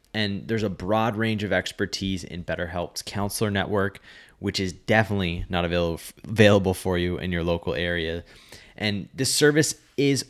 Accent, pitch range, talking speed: American, 95-120 Hz, 150 wpm